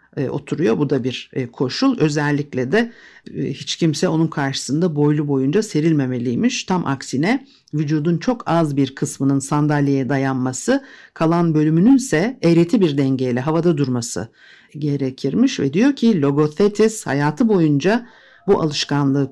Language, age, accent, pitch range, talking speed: Turkish, 60-79, native, 145-180 Hz, 120 wpm